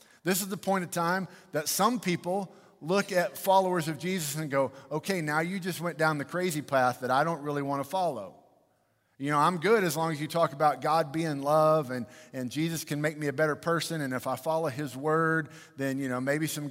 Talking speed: 235 wpm